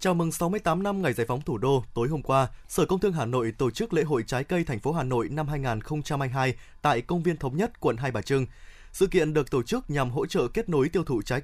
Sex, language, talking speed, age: male, Vietnamese, 270 wpm, 20-39